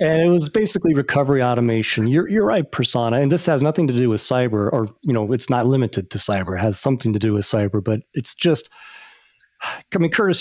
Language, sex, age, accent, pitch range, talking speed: English, male, 40-59, American, 115-150 Hz, 225 wpm